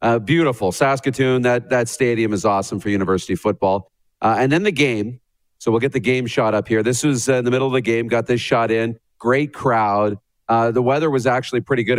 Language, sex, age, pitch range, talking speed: English, male, 40-59, 105-130 Hz, 230 wpm